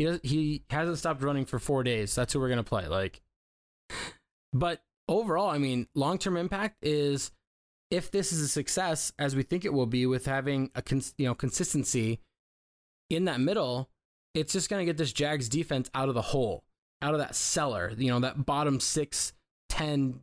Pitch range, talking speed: 125-160 Hz, 180 wpm